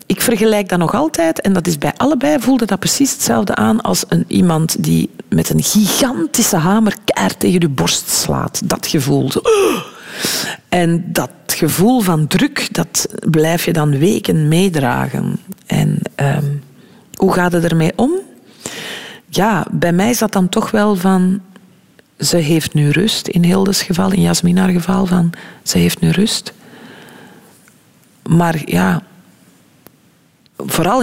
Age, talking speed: 40-59, 145 wpm